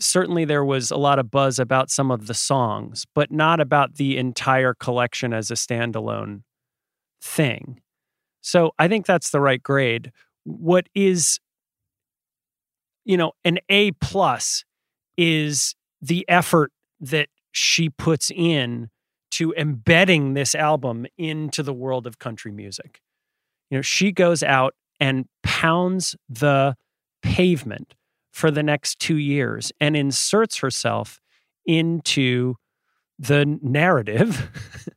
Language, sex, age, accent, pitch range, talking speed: English, male, 30-49, American, 130-175 Hz, 125 wpm